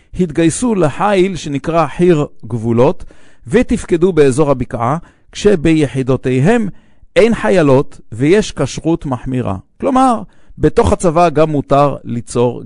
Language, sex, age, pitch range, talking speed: English, male, 50-69, 125-165 Hz, 95 wpm